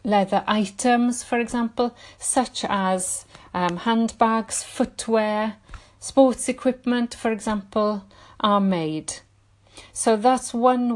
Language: English